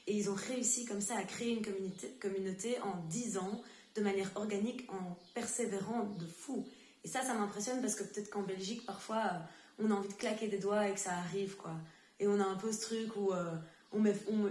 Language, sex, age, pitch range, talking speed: French, female, 20-39, 180-210 Hz, 230 wpm